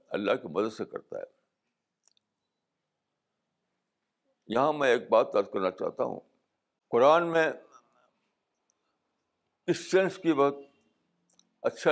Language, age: Urdu, 60-79